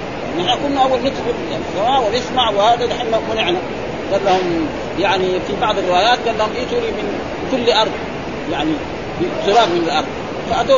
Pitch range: 175-240 Hz